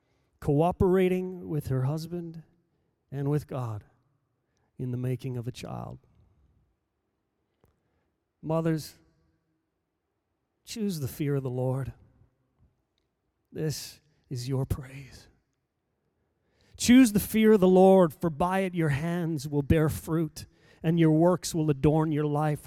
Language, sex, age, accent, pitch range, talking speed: English, male, 40-59, American, 140-190 Hz, 120 wpm